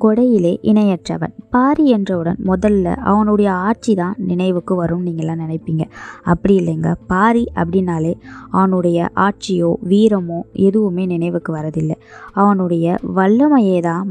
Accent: native